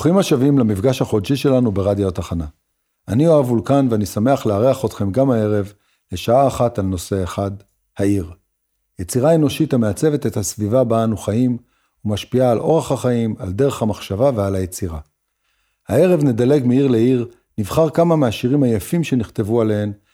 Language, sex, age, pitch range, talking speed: Hebrew, male, 50-69, 100-130 Hz, 145 wpm